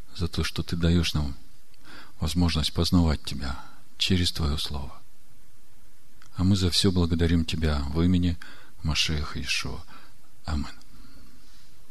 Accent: native